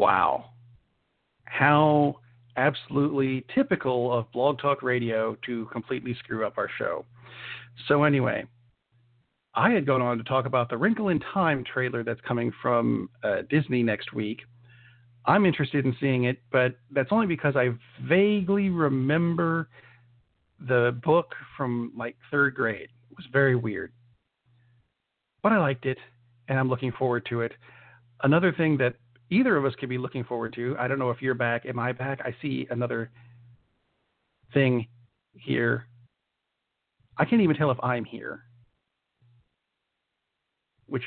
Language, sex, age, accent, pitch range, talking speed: English, male, 50-69, American, 120-140 Hz, 145 wpm